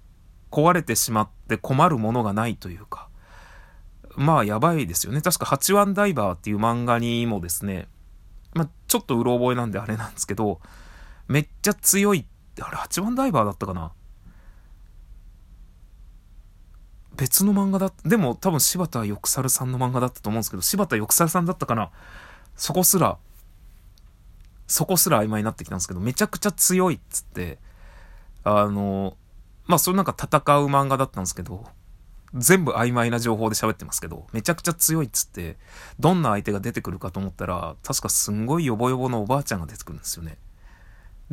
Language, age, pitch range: Japanese, 30-49, 95-150 Hz